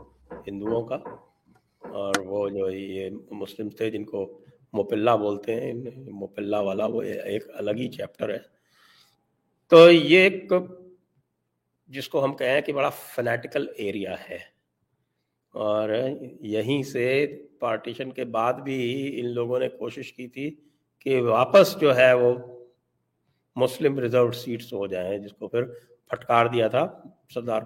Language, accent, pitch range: English, Indian, 110-150 Hz